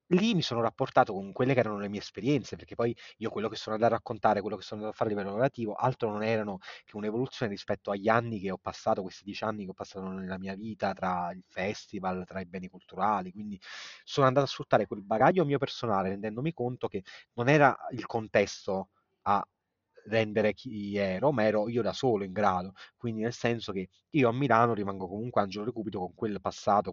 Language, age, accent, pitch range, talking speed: Italian, 30-49, native, 100-125 Hz, 220 wpm